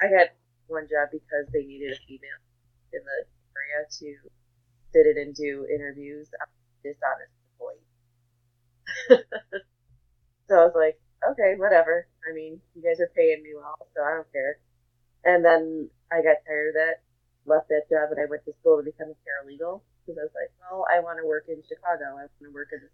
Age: 30-49